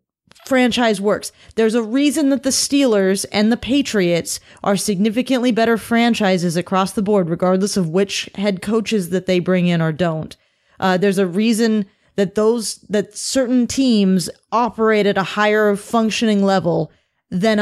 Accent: American